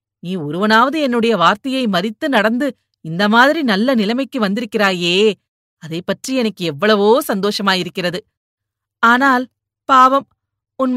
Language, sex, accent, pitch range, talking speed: Tamil, female, native, 195-255 Hz, 110 wpm